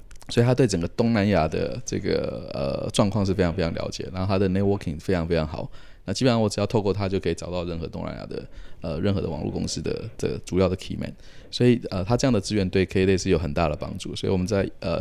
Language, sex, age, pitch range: Chinese, male, 20-39, 90-110 Hz